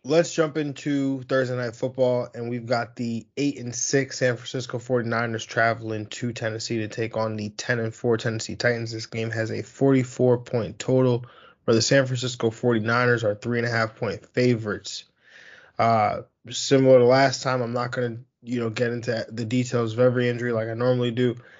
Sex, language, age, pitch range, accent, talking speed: male, English, 20-39, 110-125 Hz, American, 180 wpm